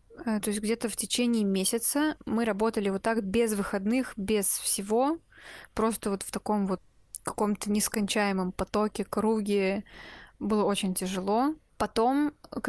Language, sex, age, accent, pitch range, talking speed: Russian, female, 20-39, native, 195-220 Hz, 130 wpm